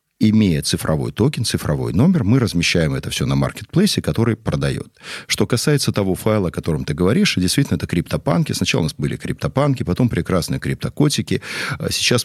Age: 40-59